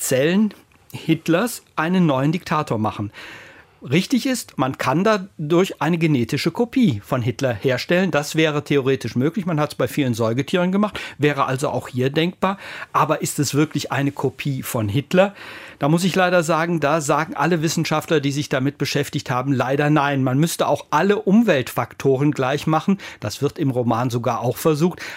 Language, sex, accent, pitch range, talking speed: German, male, German, 135-165 Hz, 170 wpm